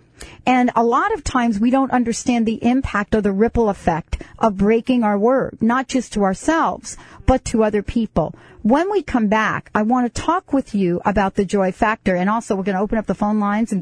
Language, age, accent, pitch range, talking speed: English, 50-69, American, 190-235 Hz, 220 wpm